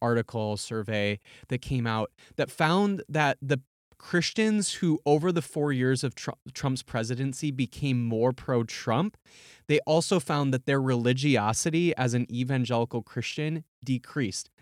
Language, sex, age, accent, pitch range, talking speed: English, male, 20-39, American, 125-155 Hz, 130 wpm